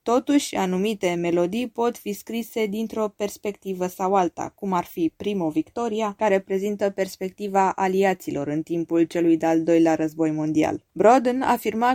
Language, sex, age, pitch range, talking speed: Romanian, female, 20-39, 175-230 Hz, 140 wpm